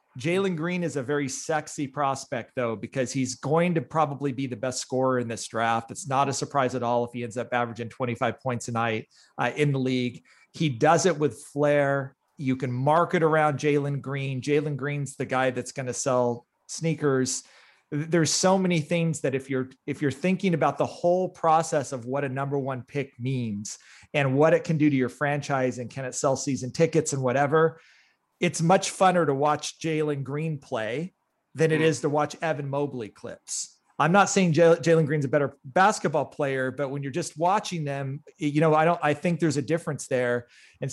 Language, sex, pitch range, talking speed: English, male, 130-160 Hz, 200 wpm